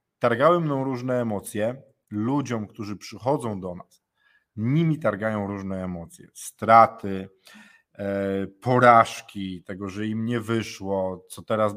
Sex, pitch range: male, 100-120 Hz